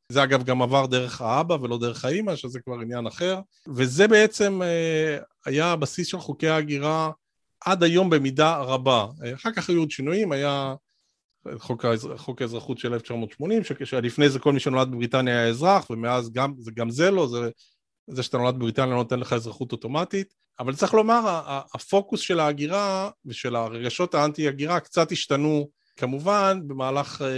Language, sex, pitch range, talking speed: Hebrew, male, 125-160 Hz, 160 wpm